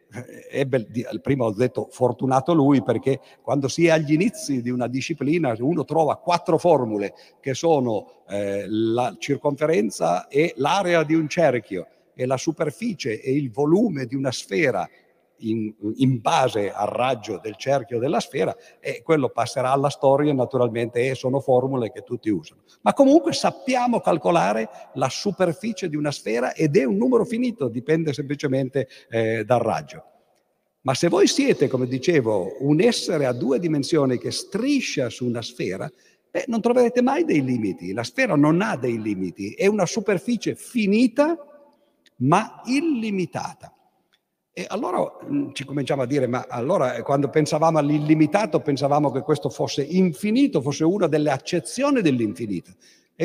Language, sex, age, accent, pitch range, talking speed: Italian, male, 50-69, native, 130-185 Hz, 150 wpm